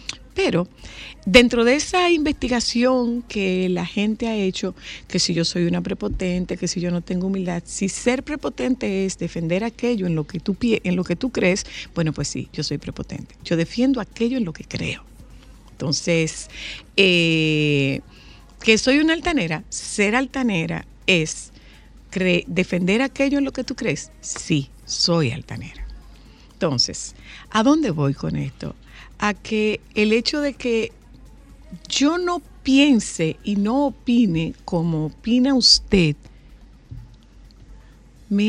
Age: 50-69